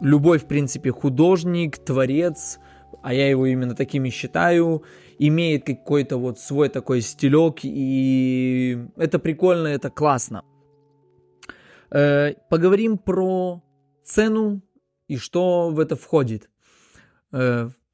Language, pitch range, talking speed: Russian, 135-175 Hz, 105 wpm